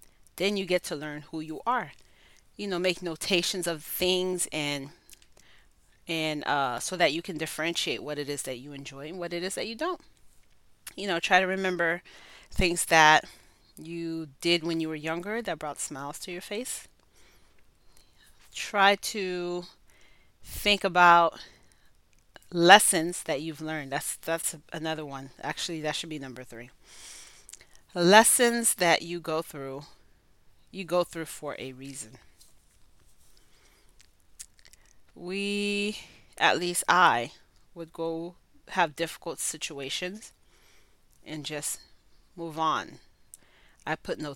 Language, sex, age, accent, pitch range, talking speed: English, female, 30-49, American, 150-185 Hz, 135 wpm